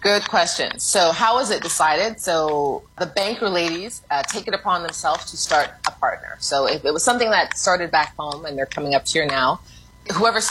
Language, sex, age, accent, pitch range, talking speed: English, female, 30-49, American, 160-210 Hz, 205 wpm